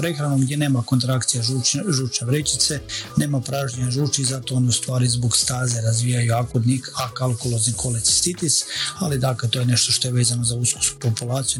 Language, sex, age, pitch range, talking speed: Croatian, male, 40-59, 120-135 Hz, 165 wpm